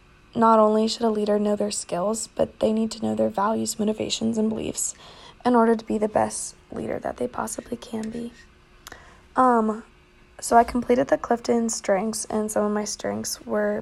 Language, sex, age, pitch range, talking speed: English, female, 20-39, 210-235 Hz, 185 wpm